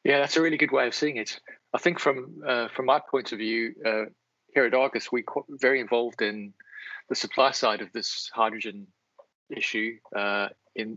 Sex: male